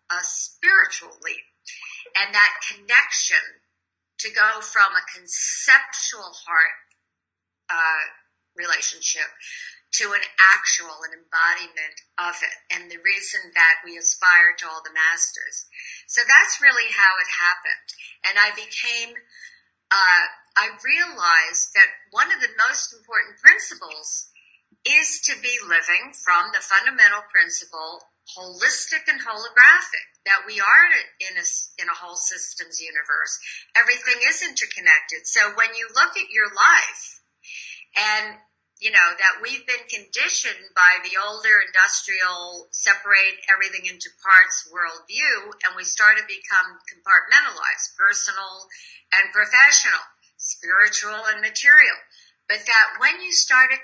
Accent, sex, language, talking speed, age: American, female, English, 125 wpm, 50-69